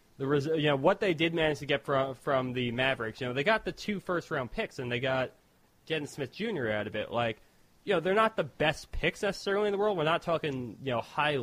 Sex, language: male, English